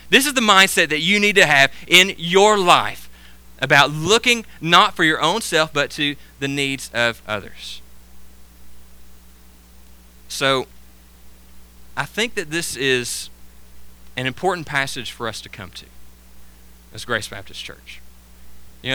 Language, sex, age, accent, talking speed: English, male, 30-49, American, 140 wpm